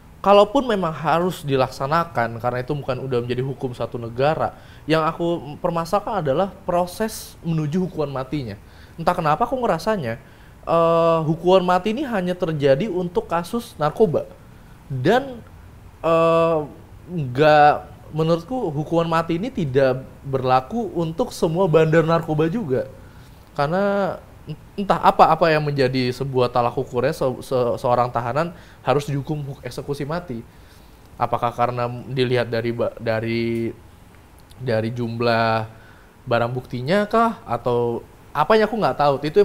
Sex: male